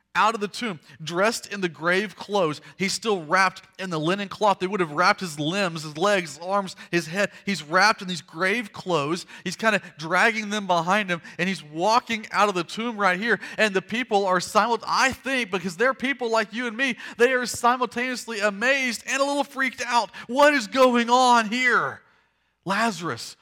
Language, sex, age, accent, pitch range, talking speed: English, male, 30-49, American, 160-225 Hz, 200 wpm